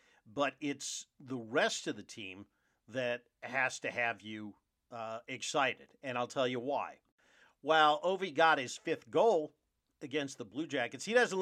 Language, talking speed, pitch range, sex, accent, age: English, 165 wpm, 120-155 Hz, male, American, 50-69